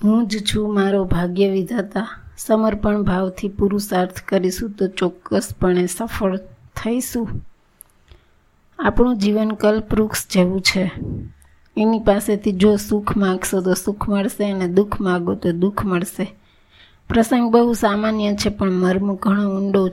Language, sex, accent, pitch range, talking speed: Gujarati, female, native, 185-205 Hz, 100 wpm